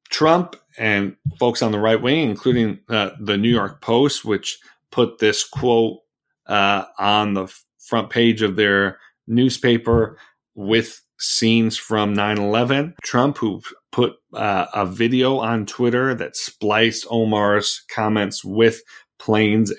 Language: English